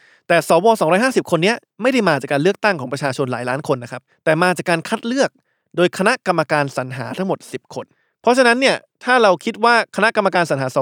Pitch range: 140-190 Hz